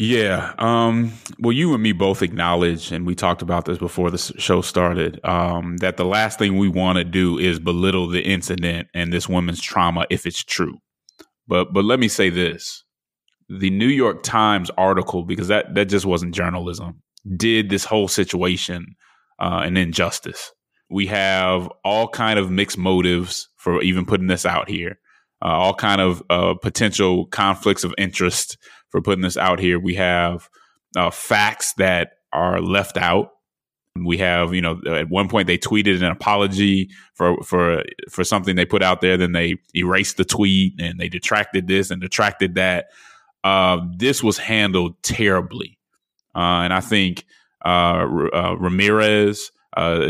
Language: English